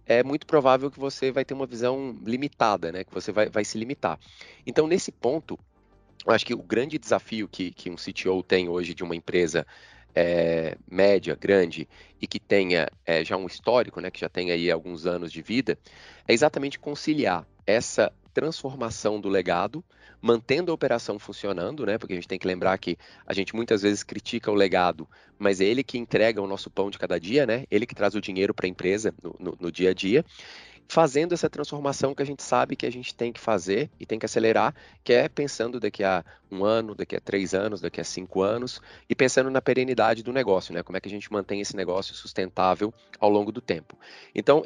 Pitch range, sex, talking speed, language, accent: 95-125 Hz, male, 215 wpm, Portuguese, Brazilian